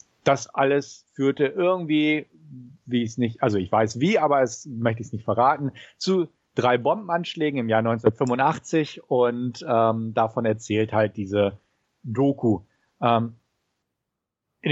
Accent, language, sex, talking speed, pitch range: German, German, male, 130 wpm, 115-145 Hz